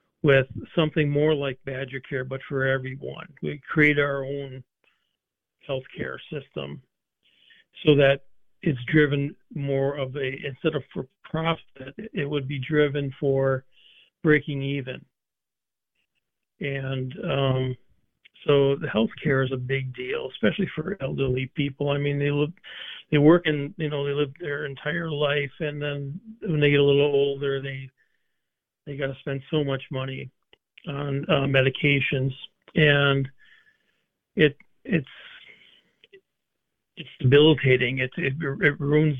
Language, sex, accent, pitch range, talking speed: English, male, American, 135-150 Hz, 135 wpm